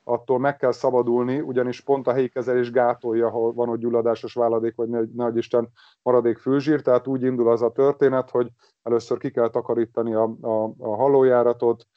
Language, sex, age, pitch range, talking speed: Hungarian, male, 30-49, 115-130 Hz, 170 wpm